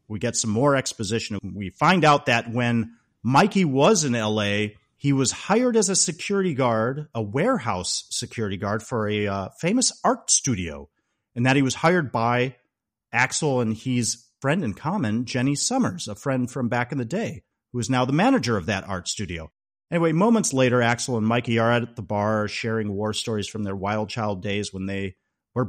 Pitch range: 105-135 Hz